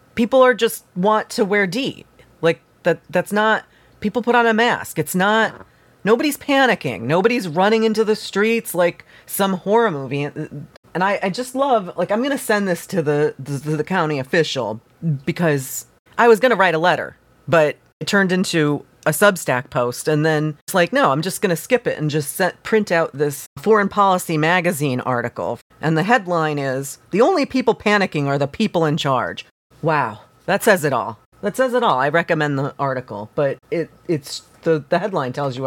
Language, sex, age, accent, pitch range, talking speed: English, female, 30-49, American, 150-210 Hz, 195 wpm